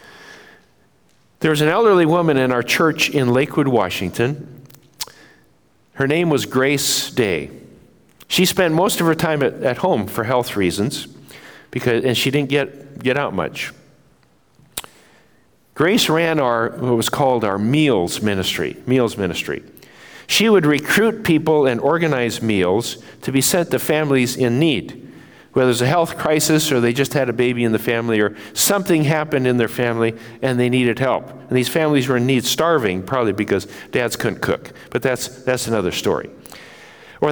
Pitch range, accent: 115-155 Hz, American